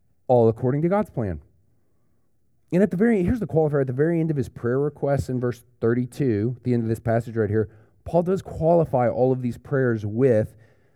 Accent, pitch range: American, 115-140 Hz